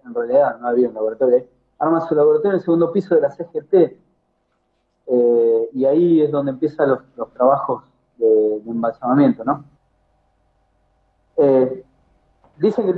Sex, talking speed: male, 155 wpm